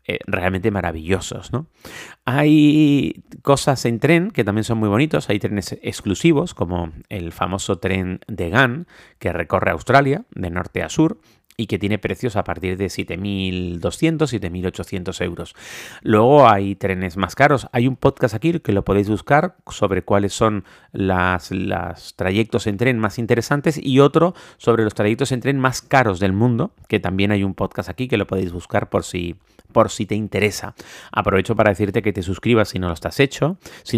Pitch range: 95-125 Hz